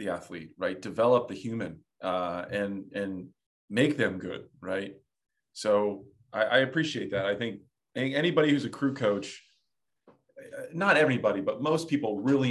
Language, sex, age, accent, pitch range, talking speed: English, male, 40-59, American, 100-140 Hz, 150 wpm